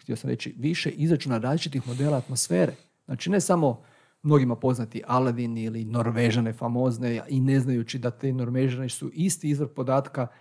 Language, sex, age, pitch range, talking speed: Croatian, male, 40-59, 120-160 Hz, 155 wpm